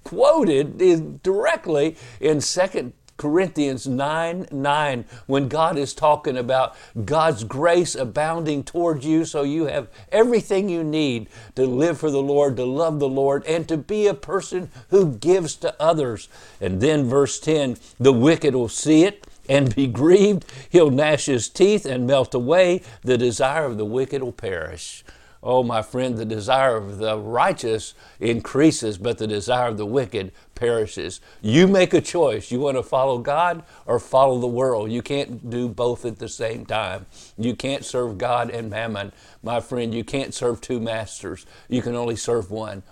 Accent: American